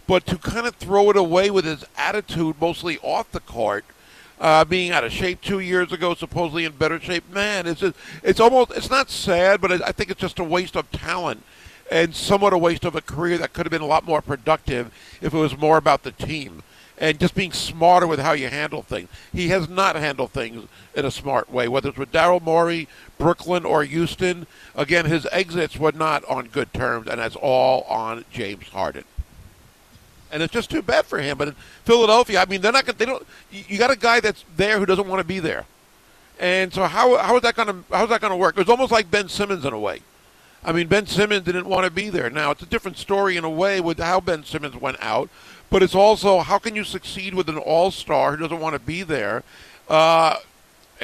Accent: American